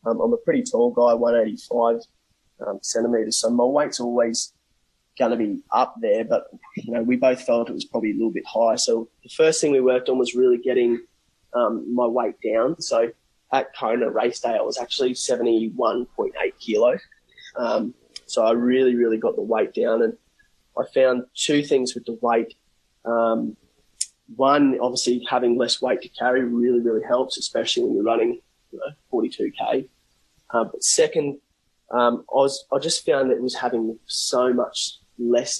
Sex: male